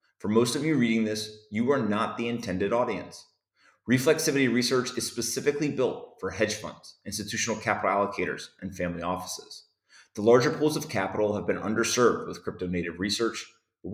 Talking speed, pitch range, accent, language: 165 wpm, 100-130 Hz, American, English